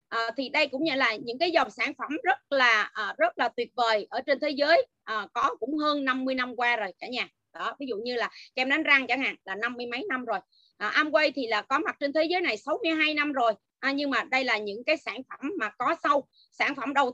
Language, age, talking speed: Vietnamese, 30-49, 265 wpm